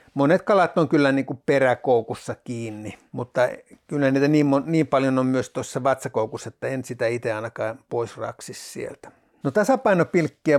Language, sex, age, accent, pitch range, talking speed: Finnish, male, 60-79, native, 125-150 Hz, 160 wpm